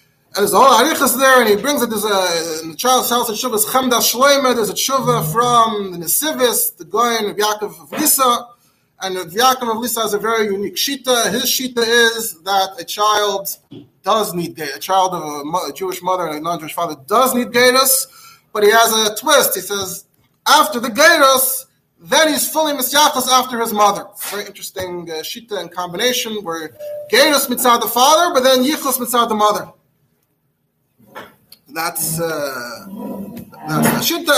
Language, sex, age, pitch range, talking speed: English, male, 20-39, 190-255 Hz, 180 wpm